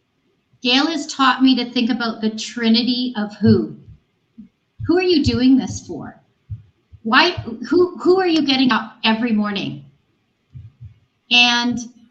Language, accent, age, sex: English, American, 40-59, female